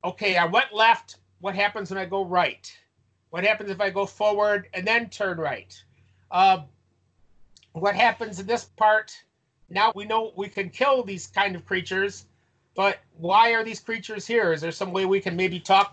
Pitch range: 165-210 Hz